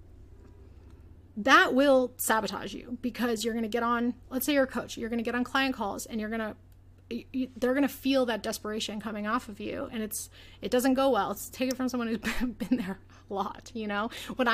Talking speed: 225 wpm